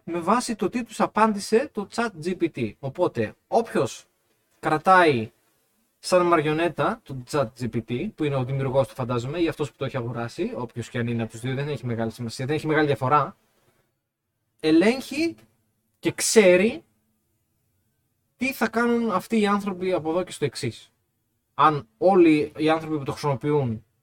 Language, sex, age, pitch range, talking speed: Greek, male, 20-39, 110-175 Hz, 155 wpm